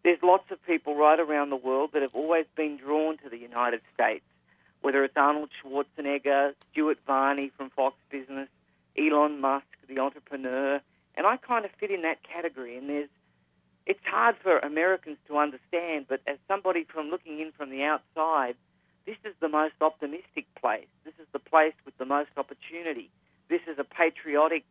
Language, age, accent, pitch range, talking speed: English, 40-59, Australian, 135-165 Hz, 175 wpm